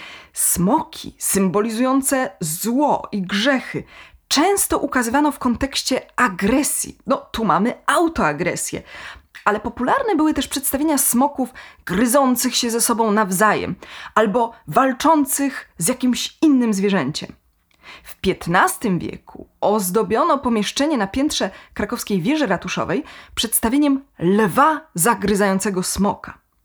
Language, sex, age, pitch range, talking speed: Polish, female, 20-39, 195-275 Hz, 100 wpm